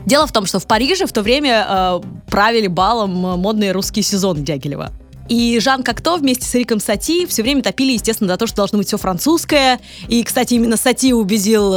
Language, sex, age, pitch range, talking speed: Russian, female, 20-39, 190-255 Hz, 200 wpm